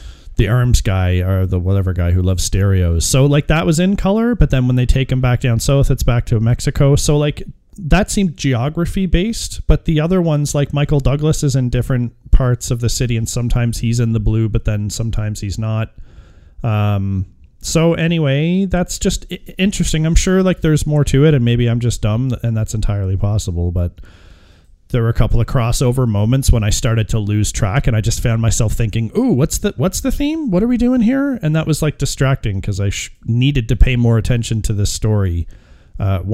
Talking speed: 215 wpm